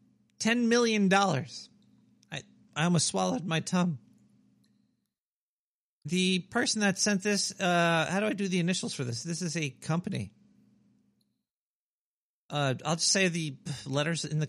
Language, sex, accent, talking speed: English, male, American, 145 wpm